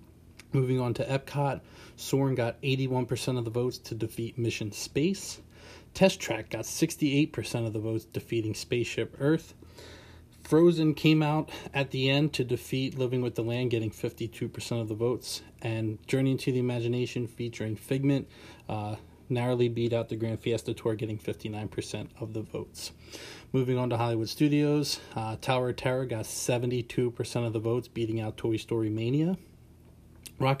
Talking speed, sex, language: 160 wpm, male, English